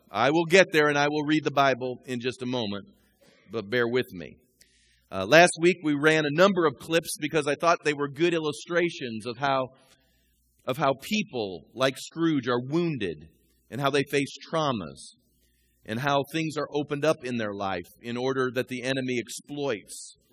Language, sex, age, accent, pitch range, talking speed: English, male, 40-59, American, 130-175 Hz, 185 wpm